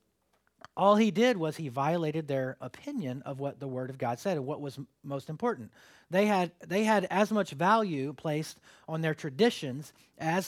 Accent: American